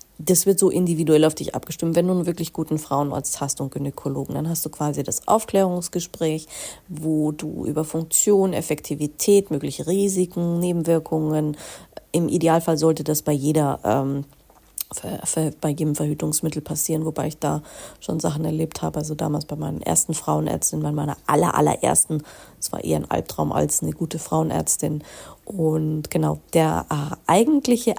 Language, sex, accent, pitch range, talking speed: German, female, German, 155-180 Hz, 160 wpm